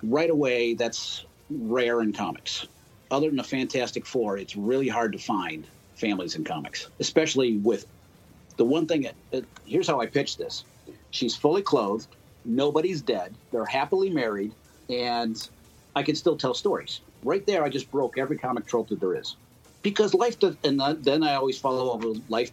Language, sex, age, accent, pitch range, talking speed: English, male, 50-69, American, 105-140 Hz, 175 wpm